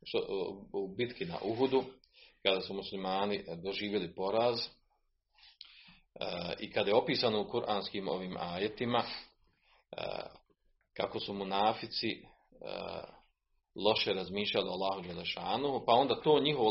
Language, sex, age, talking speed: Croatian, male, 40-59, 110 wpm